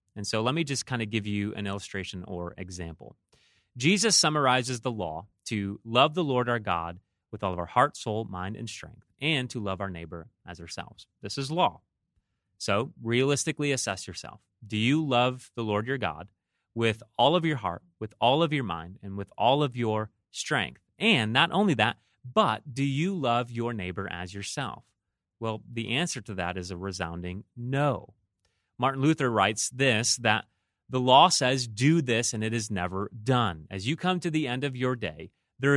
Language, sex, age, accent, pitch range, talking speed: English, male, 30-49, American, 95-135 Hz, 195 wpm